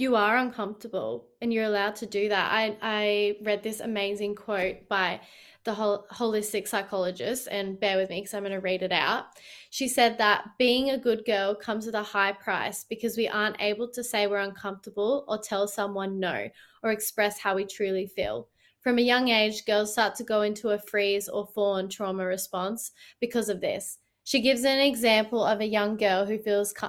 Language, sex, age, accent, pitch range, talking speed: English, female, 20-39, Australian, 200-225 Hz, 200 wpm